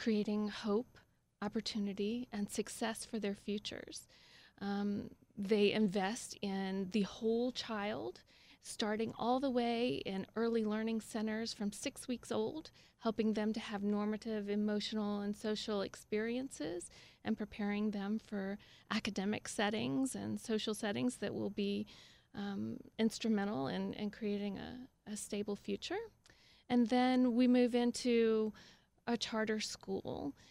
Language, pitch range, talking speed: English, 200-225 Hz, 130 wpm